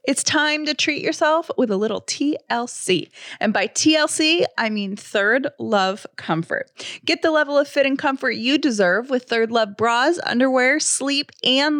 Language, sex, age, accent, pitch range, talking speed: English, female, 20-39, American, 205-275 Hz, 170 wpm